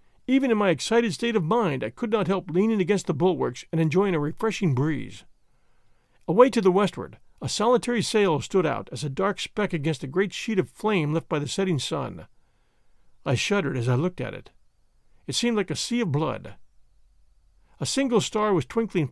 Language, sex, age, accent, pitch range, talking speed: English, male, 50-69, American, 145-210 Hz, 200 wpm